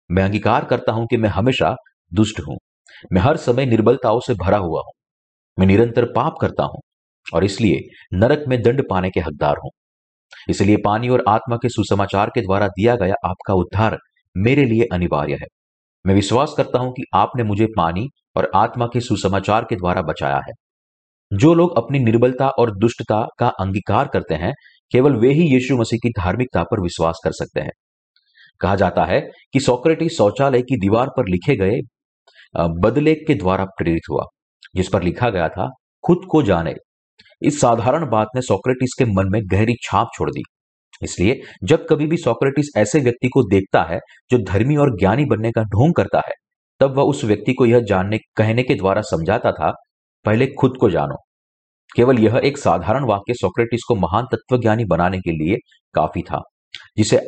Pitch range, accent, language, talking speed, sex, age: 95-125 Hz, native, Hindi, 180 wpm, male, 40-59